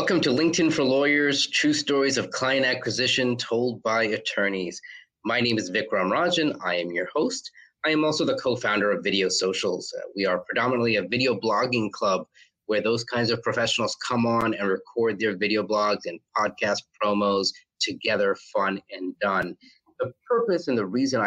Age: 30-49